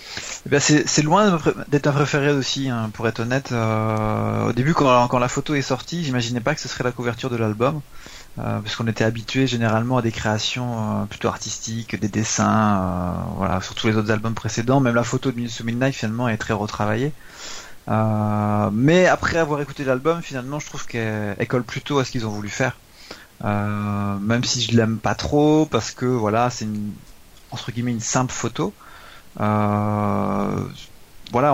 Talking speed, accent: 190 wpm, French